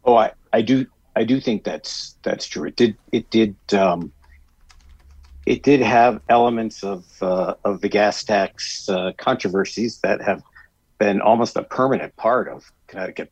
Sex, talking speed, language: male, 160 wpm, English